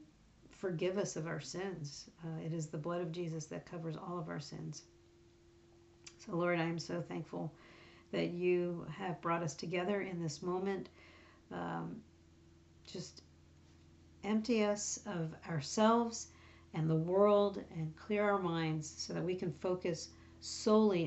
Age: 50-69